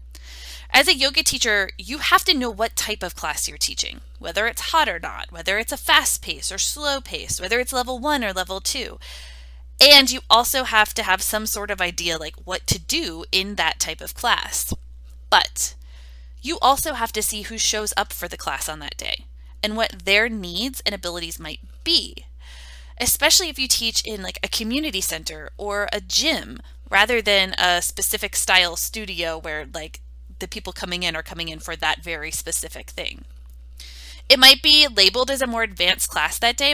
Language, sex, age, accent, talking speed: English, female, 20-39, American, 195 wpm